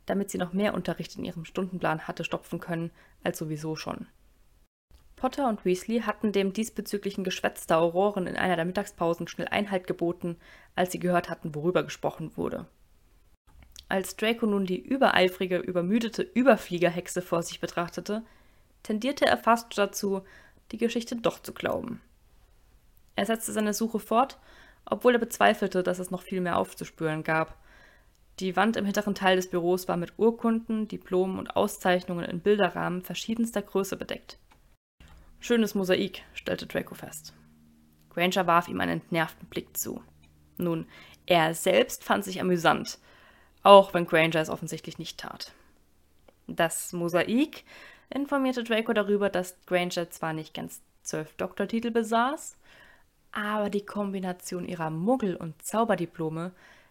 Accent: German